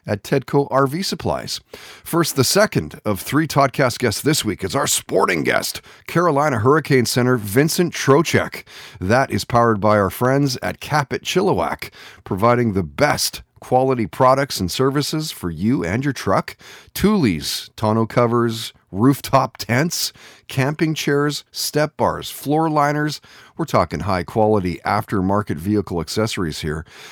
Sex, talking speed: male, 135 wpm